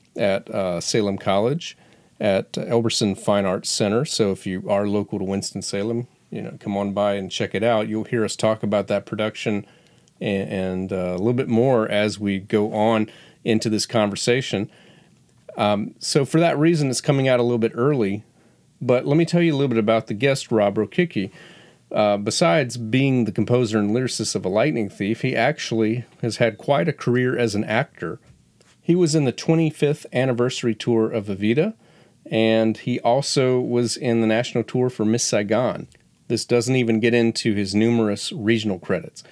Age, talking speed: 40-59, 185 wpm